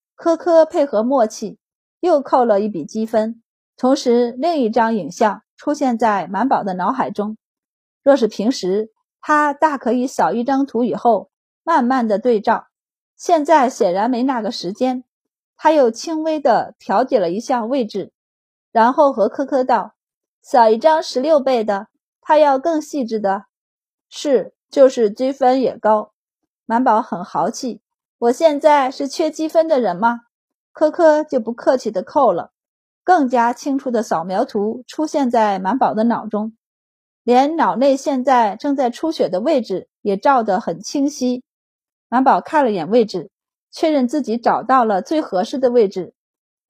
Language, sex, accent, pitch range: Chinese, female, native, 220-295 Hz